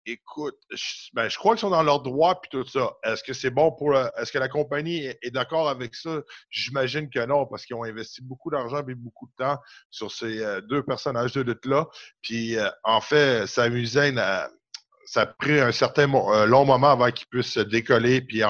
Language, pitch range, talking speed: French, 110-135 Hz, 220 wpm